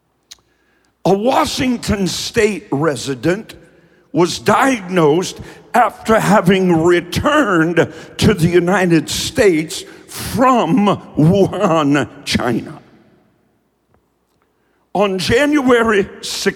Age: 60-79